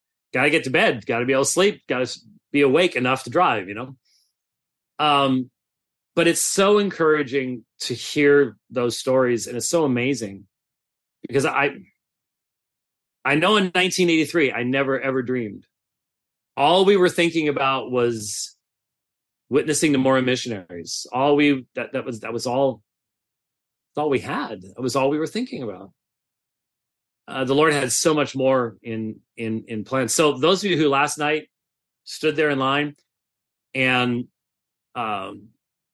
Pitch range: 120-145 Hz